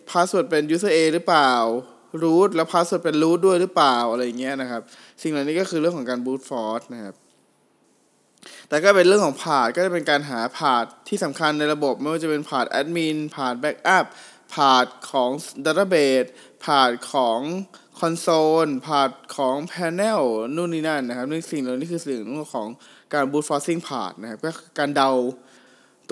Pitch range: 135-170 Hz